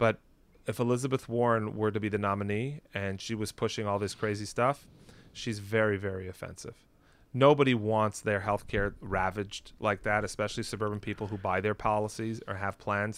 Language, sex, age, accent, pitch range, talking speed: English, male, 30-49, American, 105-130 Hz, 180 wpm